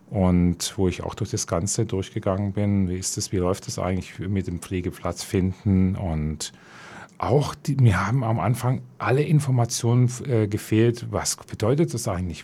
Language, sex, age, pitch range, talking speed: German, male, 40-59, 95-120 Hz, 165 wpm